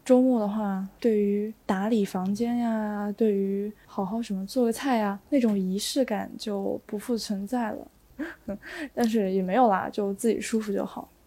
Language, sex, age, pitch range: Chinese, female, 20-39, 205-255 Hz